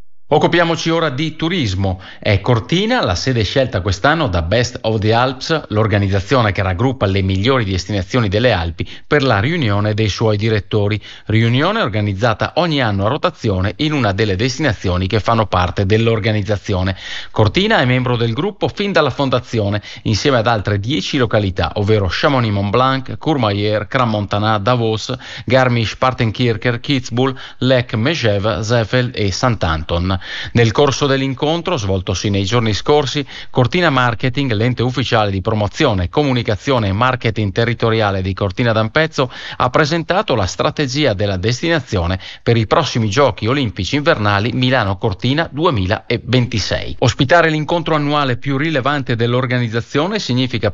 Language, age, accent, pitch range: Italian, 30-49, native, 105-135 Hz